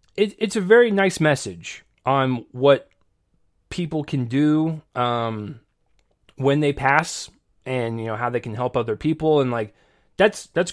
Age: 20-39